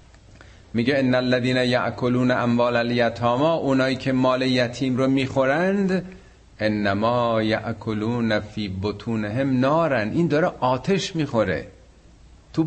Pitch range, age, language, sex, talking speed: 105-135 Hz, 50-69, Persian, male, 115 wpm